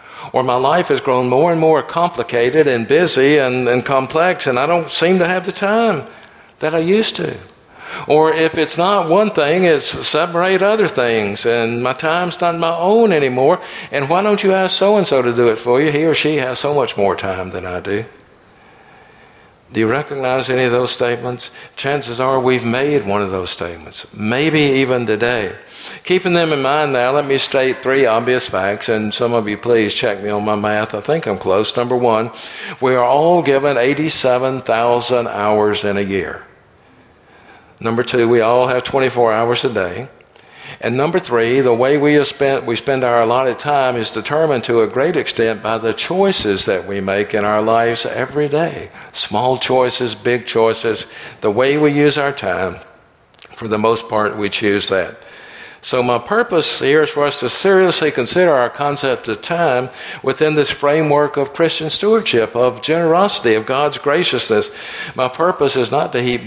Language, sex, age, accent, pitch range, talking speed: English, male, 60-79, American, 115-155 Hz, 185 wpm